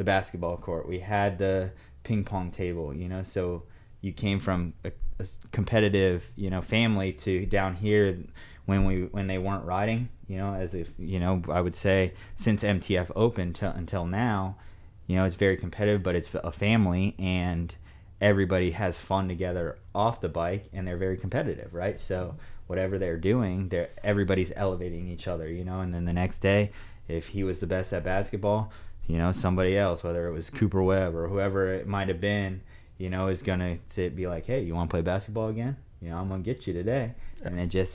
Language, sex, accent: English, male, American